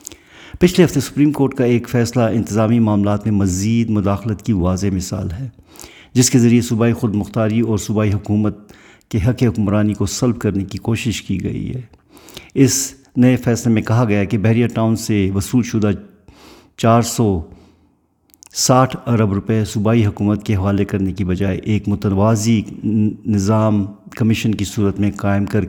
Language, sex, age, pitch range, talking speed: Urdu, male, 50-69, 100-120 Hz, 160 wpm